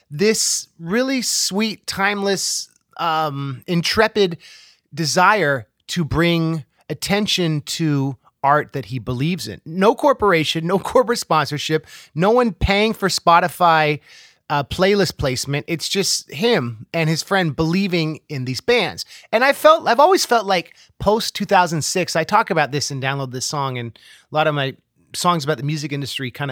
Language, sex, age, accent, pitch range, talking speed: English, male, 30-49, American, 140-190 Hz, 145 wpm